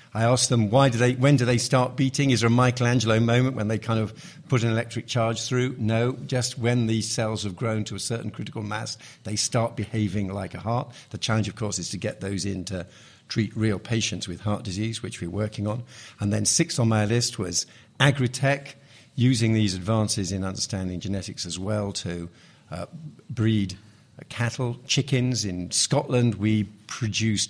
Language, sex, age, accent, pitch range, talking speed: English, male, 50-69, British, 105-125 Hz, 190 wpm